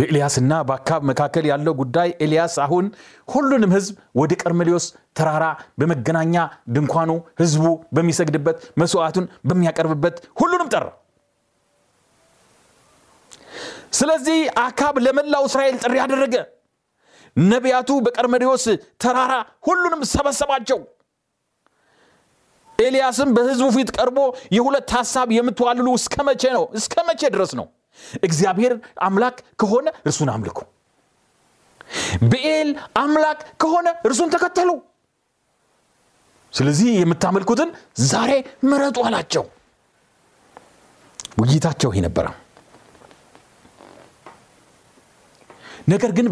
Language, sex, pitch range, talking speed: Amharic, male, 165-265 Hz, 75 wpm